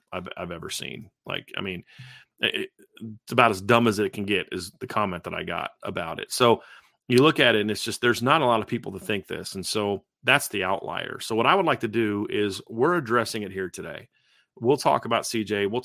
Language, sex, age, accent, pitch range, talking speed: English, male, 40-59, American, 105-125 Hz, 240 wpm